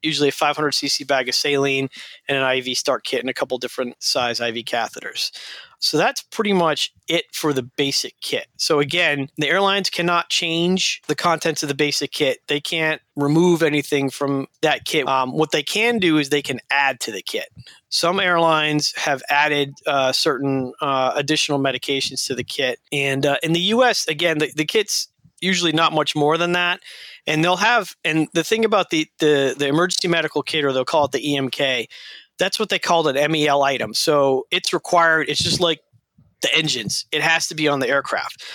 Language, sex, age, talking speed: English, male, 30-49, 195 wpm